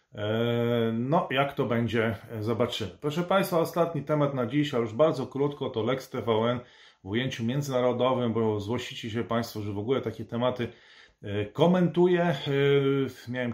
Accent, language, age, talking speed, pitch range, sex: native, Polish, 30-49, 140 wpm, 115-145 Hz, male